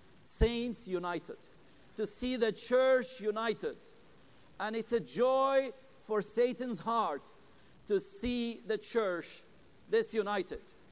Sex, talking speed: male, 105 wpm